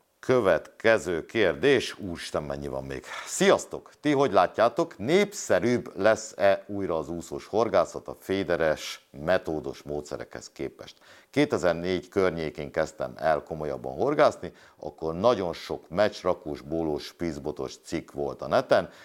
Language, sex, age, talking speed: Hungarian, male, 60-79, 115 wpm